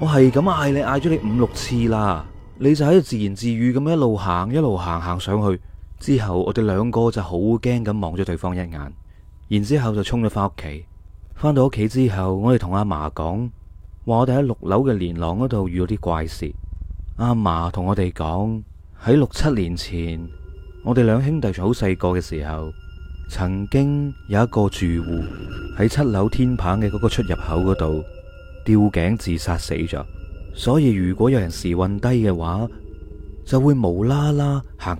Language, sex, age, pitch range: Chinese, male, 30-49, 85-125 Hz